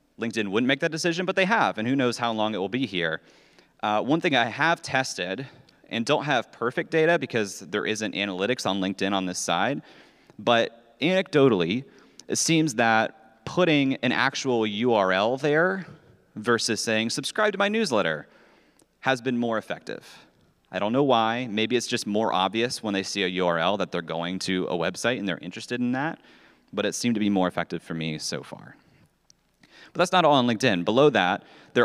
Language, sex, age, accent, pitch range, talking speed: English, male, 30-49, American, 95-130 Hz, 190 wpm